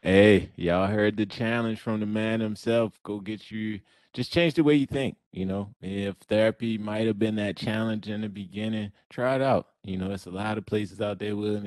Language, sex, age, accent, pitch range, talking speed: English, male, 20-39, American, 100-120 Hz, 220 wpm